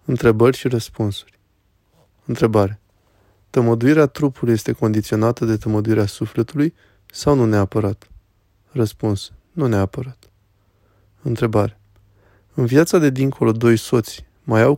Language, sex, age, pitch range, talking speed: Romanian, male, 20-39, 100-120 Hz, 105 wpm